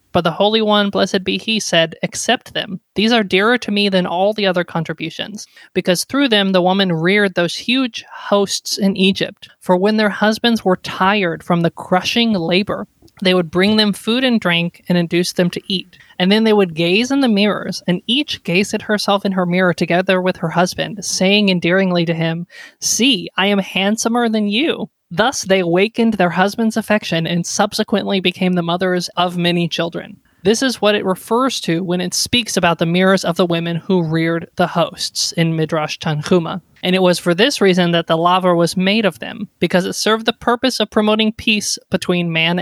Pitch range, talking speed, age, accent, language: 170-210 Hz, 200 wpm, 20-39, American, English